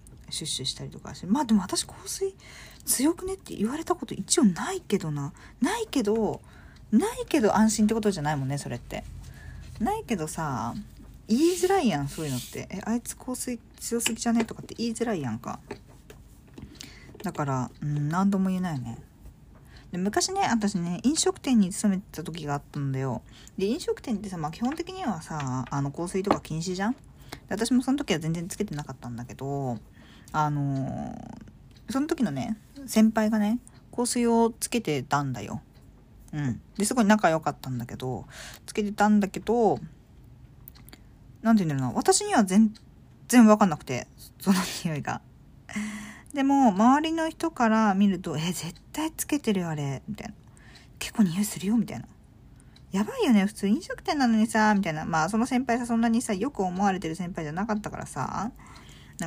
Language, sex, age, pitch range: Japanese, female, 40-59, 150-235 Hz